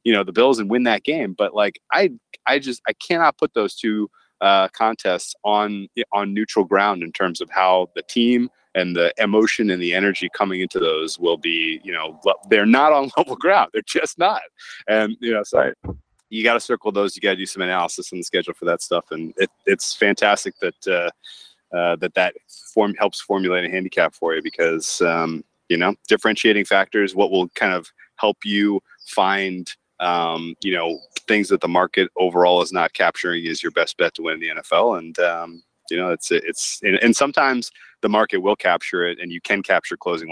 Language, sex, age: English, male, 30-49